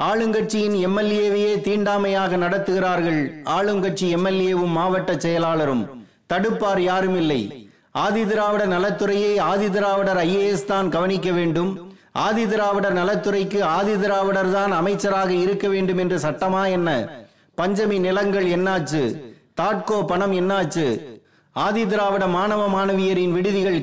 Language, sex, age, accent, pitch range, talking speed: Tamil, male, 30-49, native, 180-205 Hz, 105 wpm